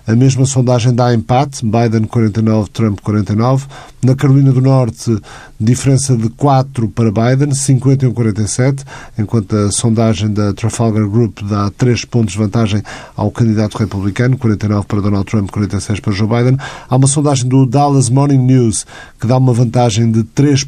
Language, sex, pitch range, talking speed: Portuguese, male, 110-130 Hz, 155 wpm